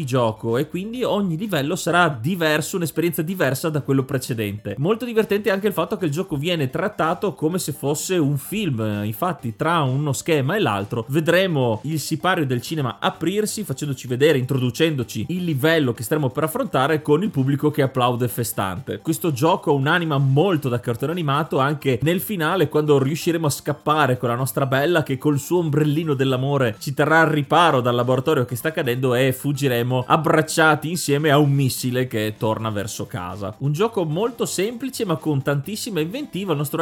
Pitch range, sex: 130-170 Hz, male